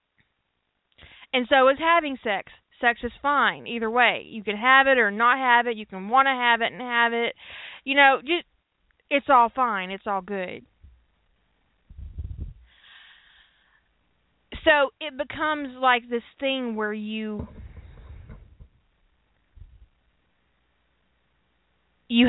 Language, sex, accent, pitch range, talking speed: English, female, American, 215-270 Hz, 120 wpm